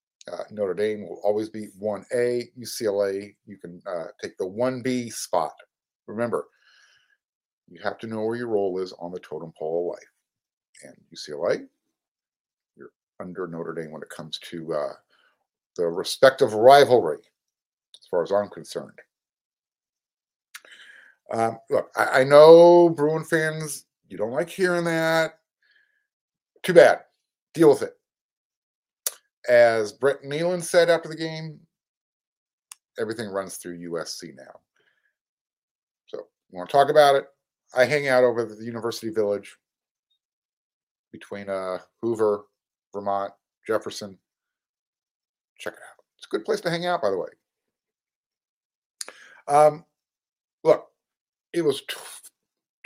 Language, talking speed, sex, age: English, 130 wpm, male, 50-69